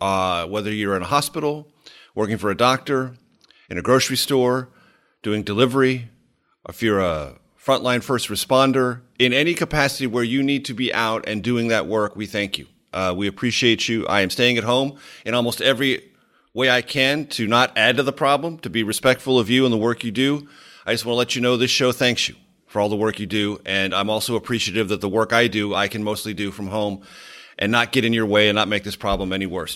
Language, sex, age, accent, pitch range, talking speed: English, male, 40-59, American, 110-145 Hz, 230 wpm